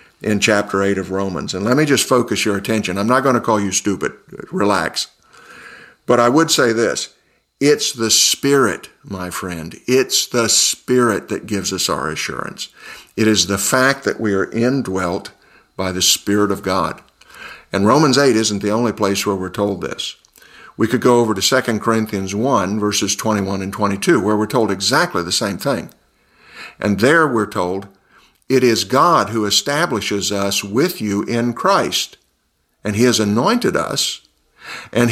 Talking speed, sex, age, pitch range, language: 175 wpm, male, 50-69, 100-120 Hz, English